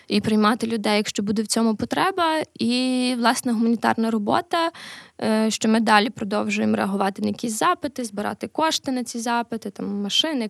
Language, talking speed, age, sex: Ukrainian, 155 wpm, 20-39, female